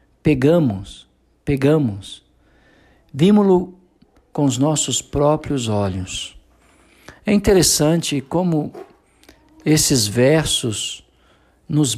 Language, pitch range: Portuguese, 120-170 Hz